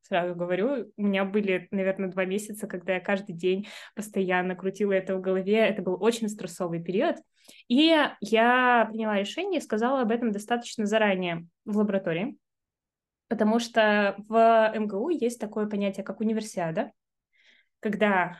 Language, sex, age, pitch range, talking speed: Russian, female, 20-39, 190-240 Hz, 145 wpm